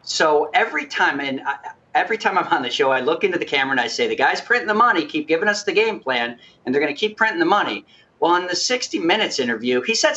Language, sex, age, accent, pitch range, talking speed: English, male, 50-69, American, 150-230 Hz, 265 wpm